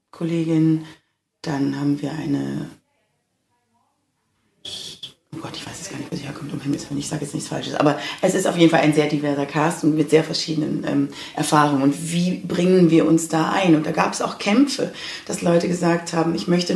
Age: 30-49